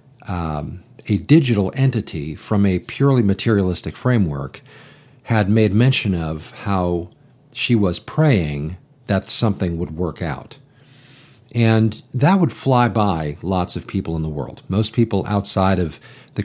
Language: English